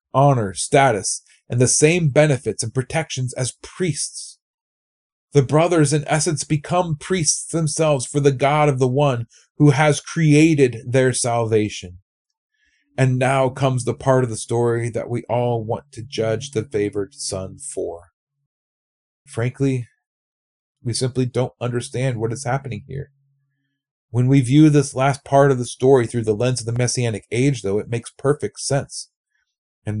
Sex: male